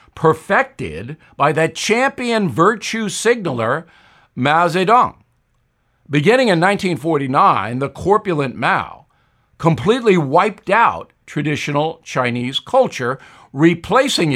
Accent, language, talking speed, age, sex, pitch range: American, English, 90 wpm, 60-79, male, 140-195 Hz